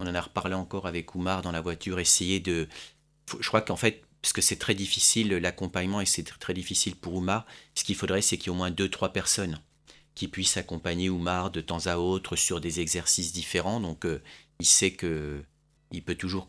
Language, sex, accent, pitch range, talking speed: French, male, French, 85-100 Hz, 220 wpm